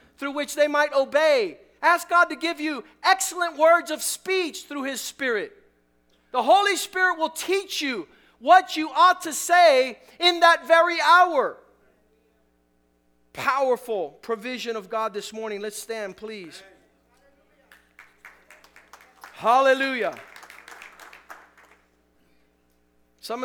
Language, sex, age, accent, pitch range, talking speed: English, male, 40-59, American, 210-280 Hz, 110 wpm